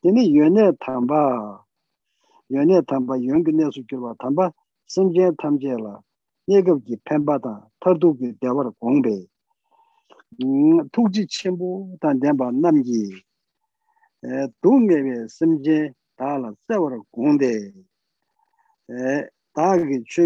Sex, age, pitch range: male, 60-79, 125-195 Hz